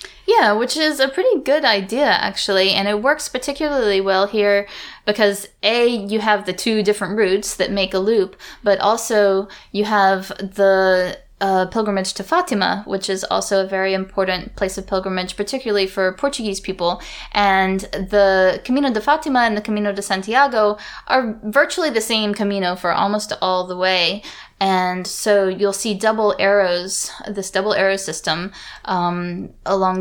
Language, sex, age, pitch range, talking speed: English, female, 10-29, 185-210 Hz, 160 wpm